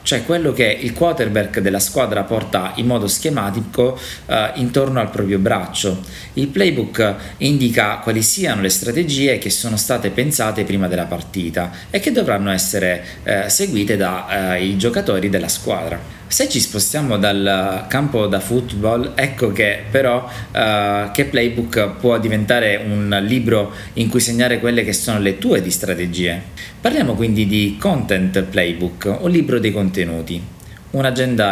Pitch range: 95-125 Hz